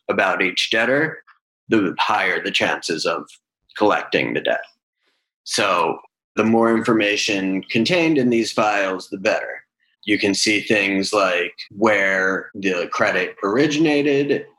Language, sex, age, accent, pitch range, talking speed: English, male, 30-49, American, 100-115 Hz, 125 wpm